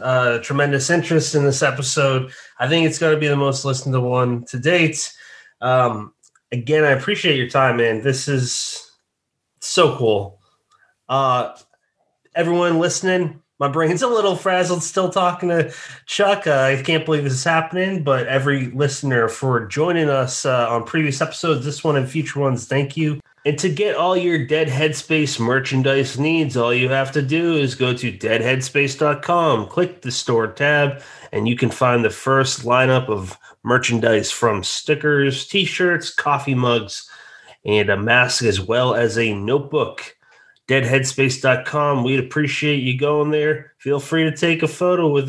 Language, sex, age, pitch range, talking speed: English, male, 20-39, 130-155 Hz, 165 wpm